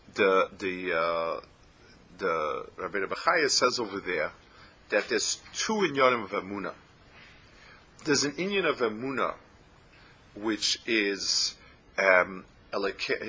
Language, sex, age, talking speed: English, male, 50-69, 105 wpm